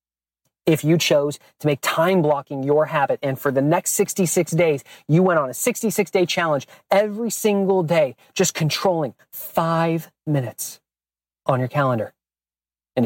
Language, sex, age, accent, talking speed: English, male, 30-49, American, 150 wpm